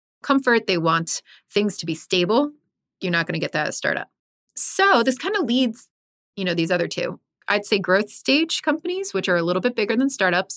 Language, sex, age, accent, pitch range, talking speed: English, female, 30-49, American, 180-245 Hz, 220 wpm